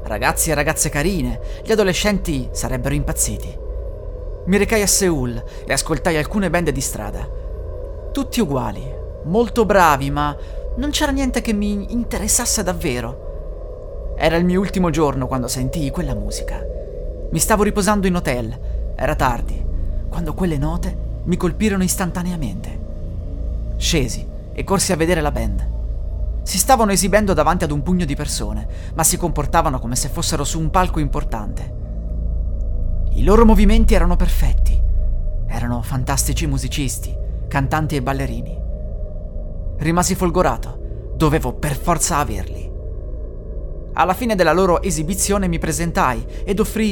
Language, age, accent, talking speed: Italian, 30-49, native, 135 wpm